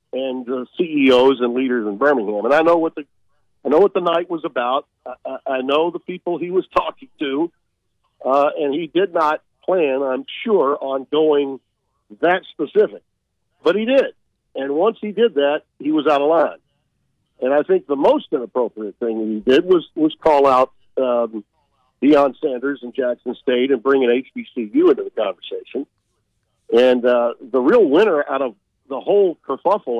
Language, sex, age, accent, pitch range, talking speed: English, male, 50-69, American, 130-185 Hz, 180 wpm